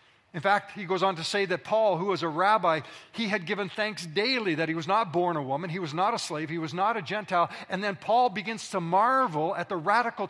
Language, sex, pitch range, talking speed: English, male, 160-210 Hz, 255 wpm